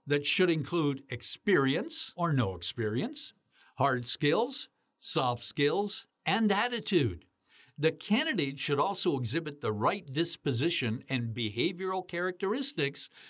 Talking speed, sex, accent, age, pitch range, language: 110 wpm, male, American, 60-79, 125-175 Hz, English